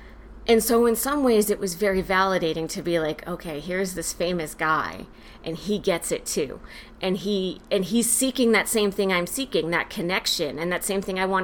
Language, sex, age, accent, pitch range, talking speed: English, female, 30-49, American, 170-210 Hz, 210 wpm